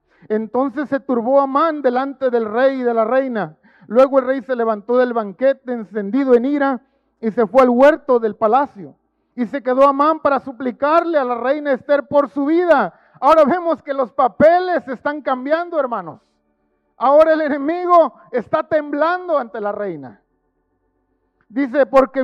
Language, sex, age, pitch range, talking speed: Spanish, male, 50-69, 230-280 Hz, 160 wpm